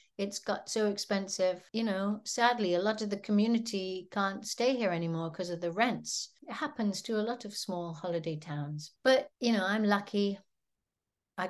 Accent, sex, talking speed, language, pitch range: British, female, 185 wpm, English, 190-225 Hz